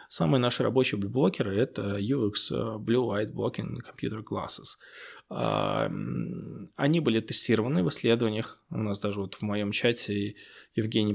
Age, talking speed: 20-39, 130 wpm